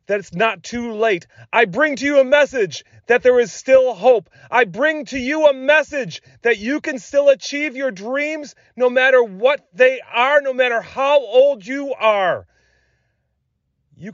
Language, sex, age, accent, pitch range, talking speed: English, male, 30-49, American, 165-235 Hz, 175 wpm